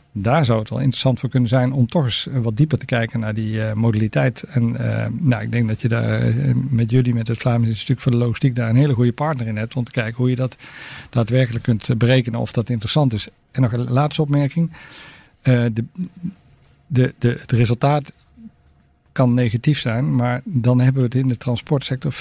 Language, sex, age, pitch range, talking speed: Dutch, male, 50-69, 115-135 Hz, 210 wpm